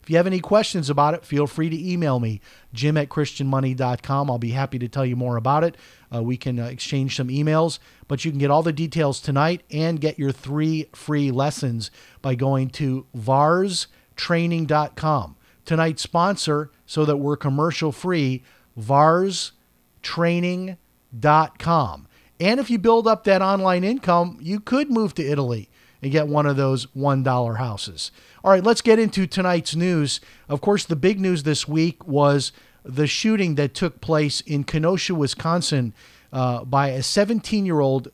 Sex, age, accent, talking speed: male, 40-59, American, 160 wpm